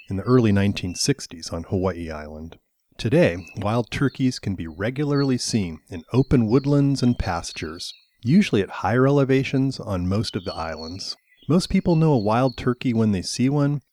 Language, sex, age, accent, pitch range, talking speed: English, male, 40-59, American, 90-130 Hz, 165 wpm